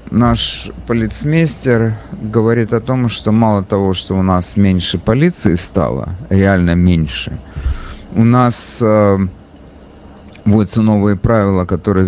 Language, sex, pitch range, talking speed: English, male, 90-120 Hz, 115 wpm